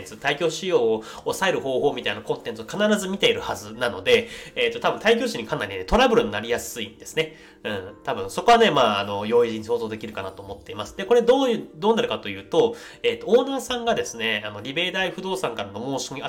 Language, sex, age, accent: Japanese, male, 30-49, native